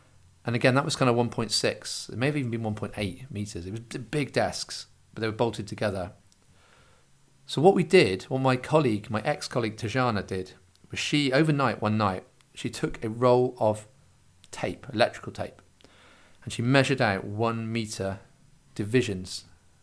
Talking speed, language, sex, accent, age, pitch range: 160 wpm, English, male, British, 40-59, 95-130 Hz